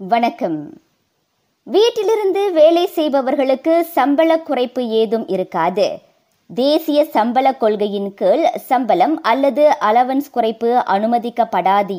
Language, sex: Tamil, male